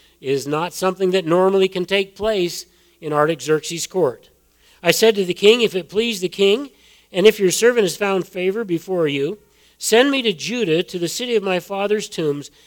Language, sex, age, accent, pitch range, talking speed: English, male, 50-69, American, 155-205 Hz, 195 wpm